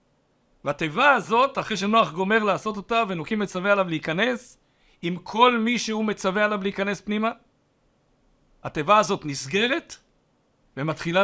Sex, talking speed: male, 125 wpm